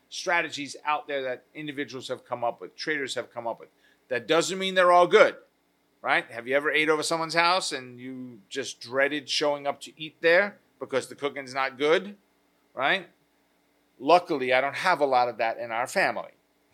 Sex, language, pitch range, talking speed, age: male, English, 140-185 Hz, 195 wpm, 40-59